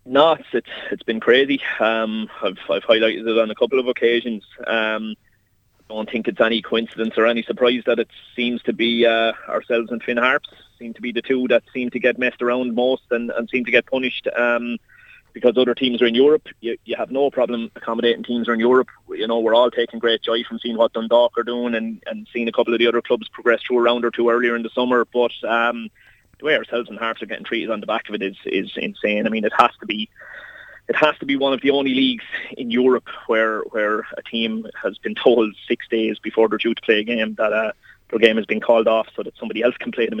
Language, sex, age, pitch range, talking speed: English, male, 20-39, 115-125 Hz, 250 wpm